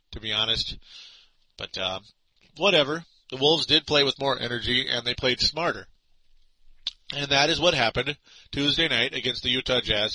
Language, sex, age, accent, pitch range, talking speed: English, male, 40-59, American, 115-140 Hz, 165 wpm